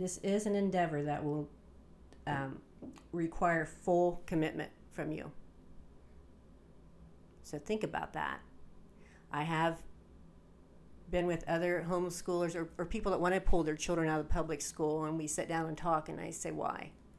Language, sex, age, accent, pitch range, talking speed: English, female, 40-59, American, 150-180 Hz, 155 wpm